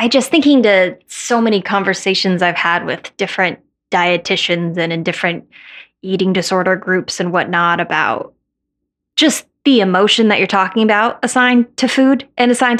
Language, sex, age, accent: English, female, 10-29, American